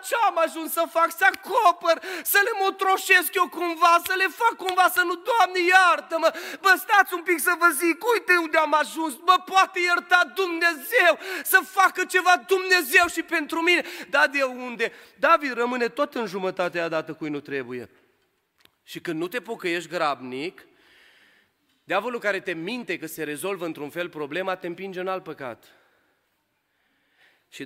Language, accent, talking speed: Romanian, native, 165 wpm